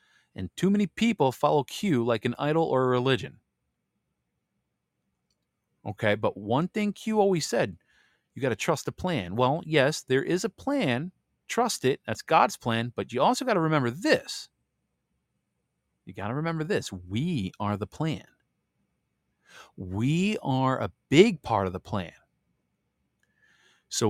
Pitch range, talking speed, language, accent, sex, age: 100-150 Hz, 150 wpm, English, American, male, 30-49